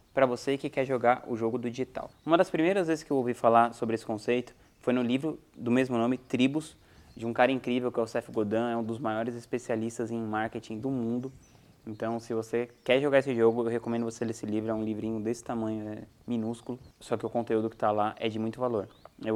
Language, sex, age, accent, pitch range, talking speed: Portuguese, male, 20-39, Brazilian, 115-140 Hz, 235 wpm